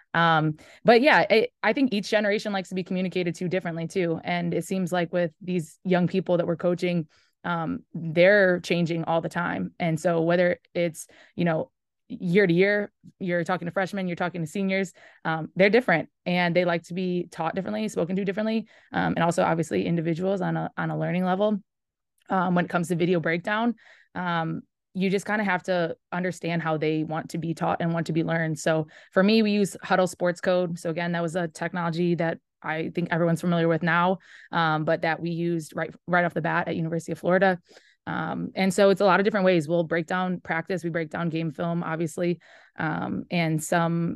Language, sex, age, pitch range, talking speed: English, female, 20-39, 165-190 Hz, 210 wpm